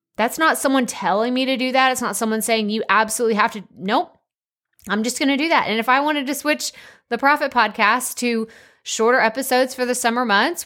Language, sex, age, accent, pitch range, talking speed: English, female, 20-39, American, 210-265 Hz, 220 wpm